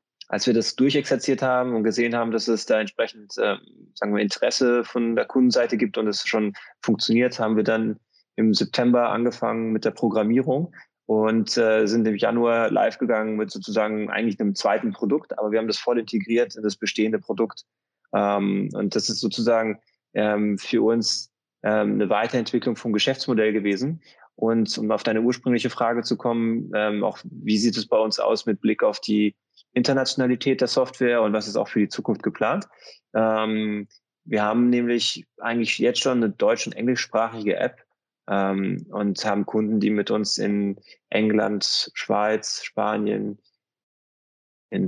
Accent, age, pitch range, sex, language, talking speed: German, 20-39, 105-120 Hz, male, German, 165 wpm